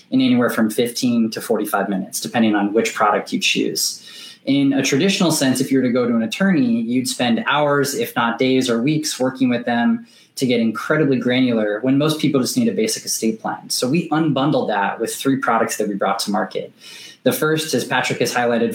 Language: English